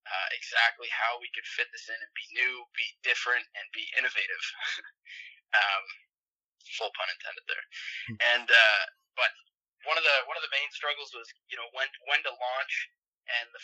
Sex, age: male, 20-39